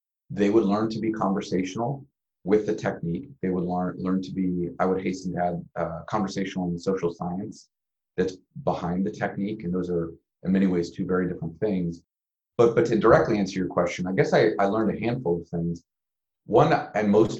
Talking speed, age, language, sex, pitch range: 200 wpm, 30-49, English, male, 90-105 Hz